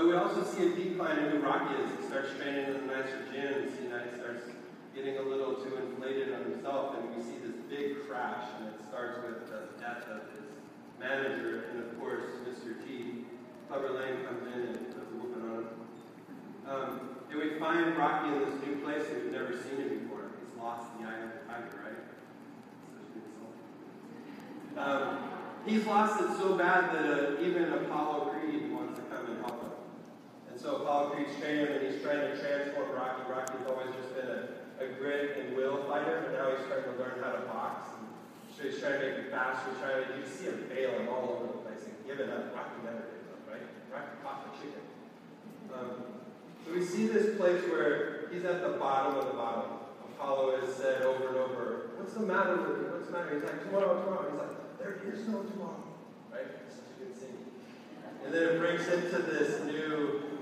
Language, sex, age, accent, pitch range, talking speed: English, male, 40-59, American, 130-165 Hz, 190 wpm